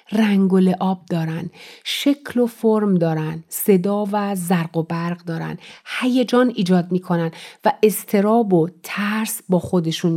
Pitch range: 180-235 Hz